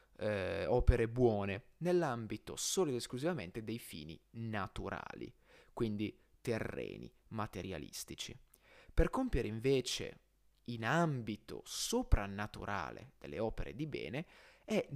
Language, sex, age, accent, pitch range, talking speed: Italian, male, 30-49, native, 105-145 Hz, 95 wpm